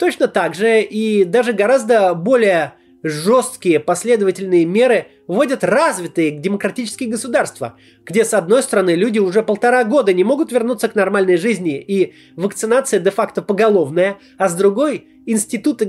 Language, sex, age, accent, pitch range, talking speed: Russian, male, 30-49, native, 190-255 Hz, 135 wpm